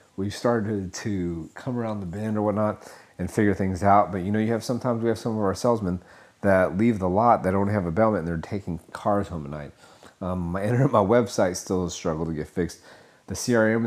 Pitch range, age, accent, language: 90-110 Hz, 30-49, American, English